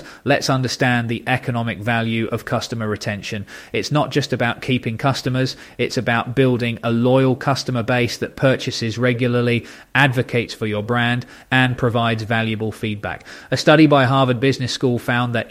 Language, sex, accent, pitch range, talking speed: English, male, British, 115-130 Hz, 155 wpm